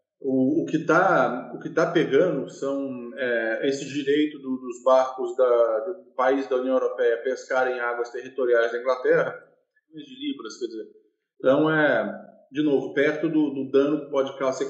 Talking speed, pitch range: 165 wpm, 130-180 Hz